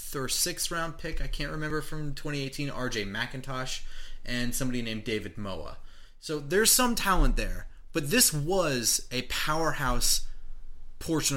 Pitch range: 105-140 Hz